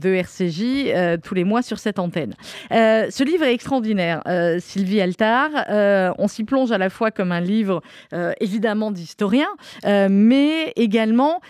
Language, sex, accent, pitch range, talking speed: French, female, French, 185-255 Hz, 170 wpm